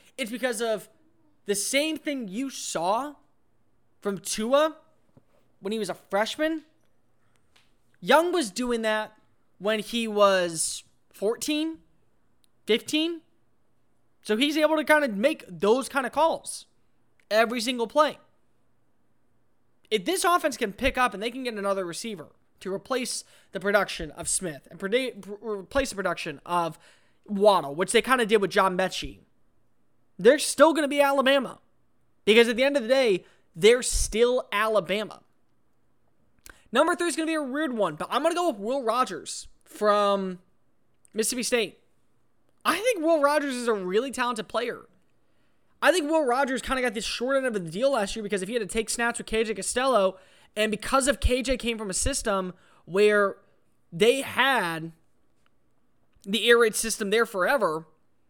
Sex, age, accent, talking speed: male, 20-39, American, 160 wpm